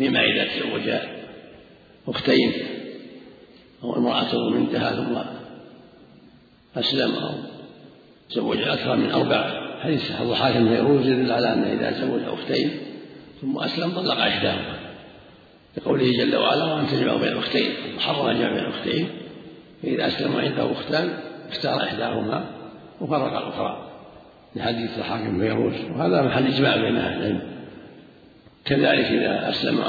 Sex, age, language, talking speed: male, 50-69, Arabic, 115 wpm